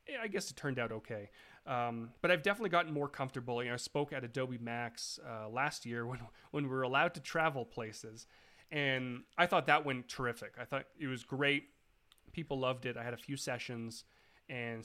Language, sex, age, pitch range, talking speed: English, male, 30-49, 120-155 Hz, 205 wpm